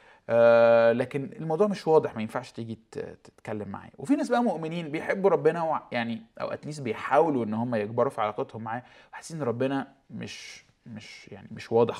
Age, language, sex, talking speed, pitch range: 20-39, Arabic, male, 160 wpm, 115-150 Hz